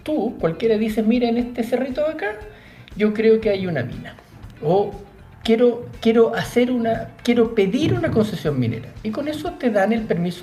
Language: Spanish